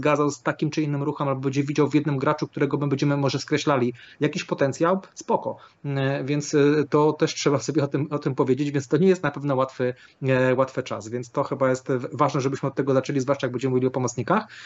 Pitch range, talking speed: 135-170 Hz, 215 wpm